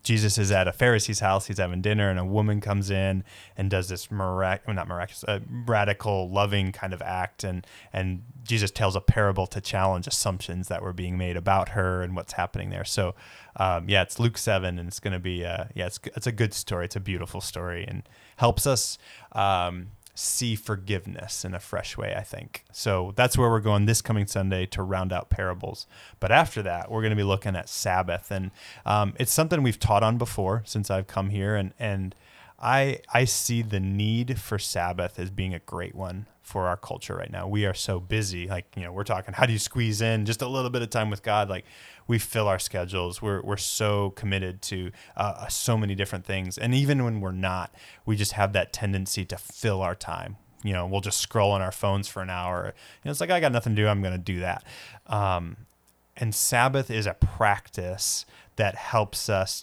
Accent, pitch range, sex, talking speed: American, 95-110 Hz, male, 220 wpm